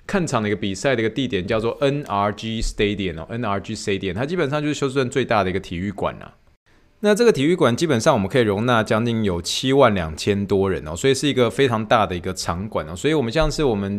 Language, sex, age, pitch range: Chinese, male, 20-39, 95-125 Hz